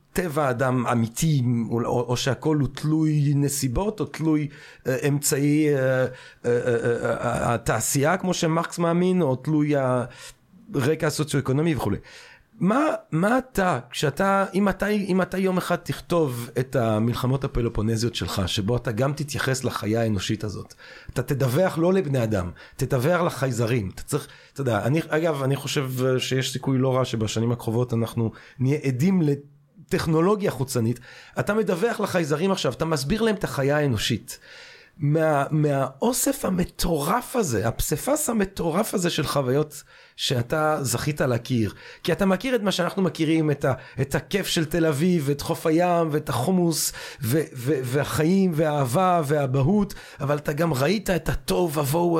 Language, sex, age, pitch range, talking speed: Hebrew, male, 30-49, 125-175 Hz, 145 wpm